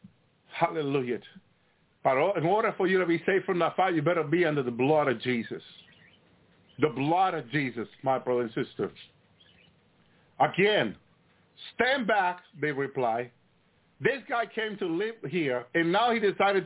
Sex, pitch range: male, 145-205 Hz